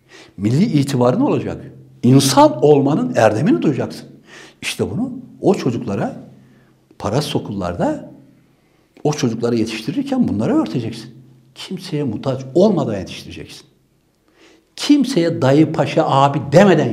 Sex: male